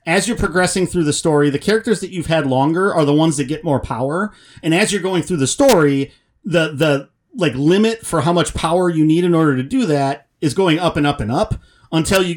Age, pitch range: 40-59, 125-175 Hz